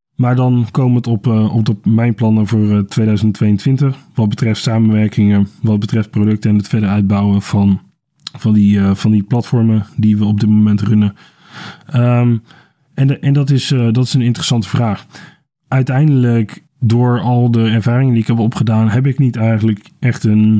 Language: Dutch